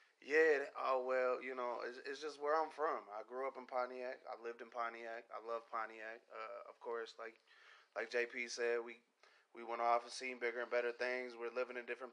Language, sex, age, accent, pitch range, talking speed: English, male, 20-39, American, 115-125 Hz, 225 wpm